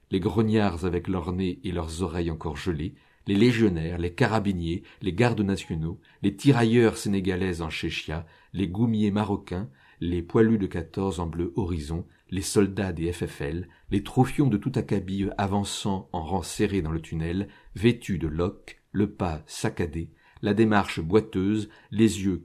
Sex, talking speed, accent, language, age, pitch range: male, 160 wpm, French, French, 50-69, 85-110 Hz